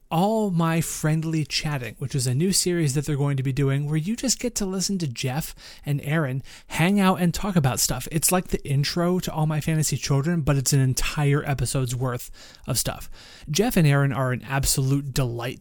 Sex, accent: male, American